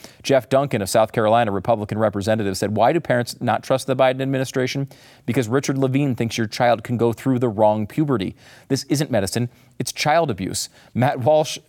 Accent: American